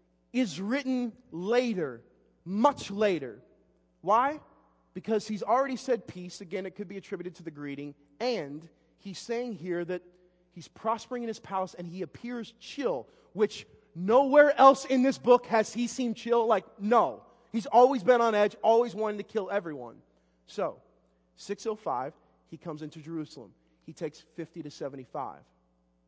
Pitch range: 130-200 Hz